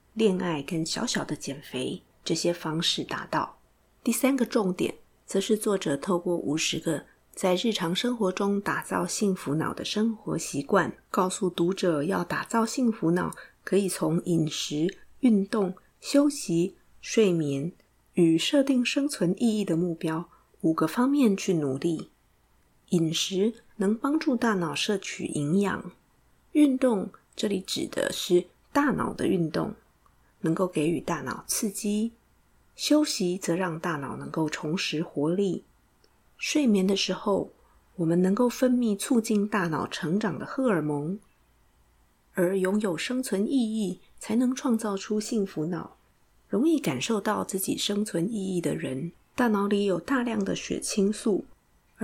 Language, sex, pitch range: Chinese, female, 170-225 Hz